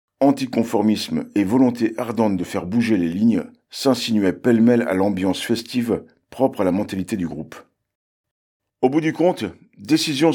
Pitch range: 100-130 Hz